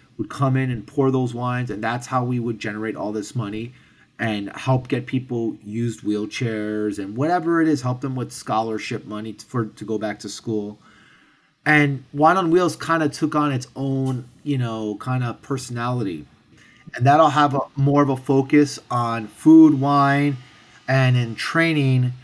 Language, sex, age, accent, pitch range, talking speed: English, male, 30-49, American, 115-140 Hz, 175 wpm